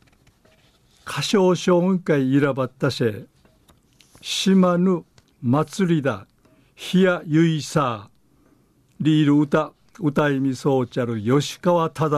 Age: 60-79